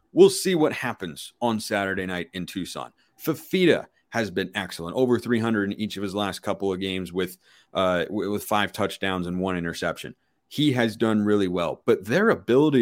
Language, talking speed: English, 185 wpm